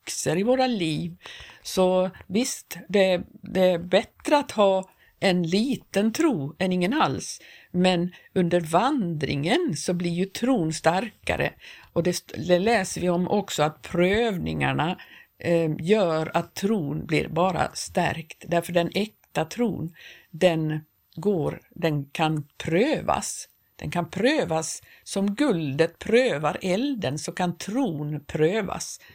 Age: 50-69